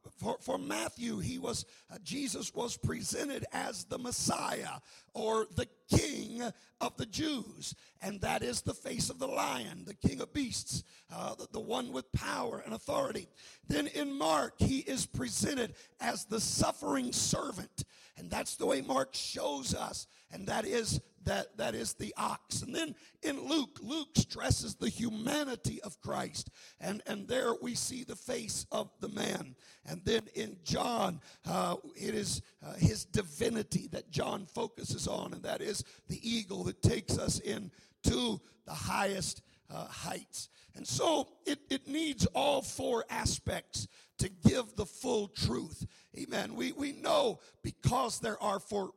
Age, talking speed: 50-69, 165 wpm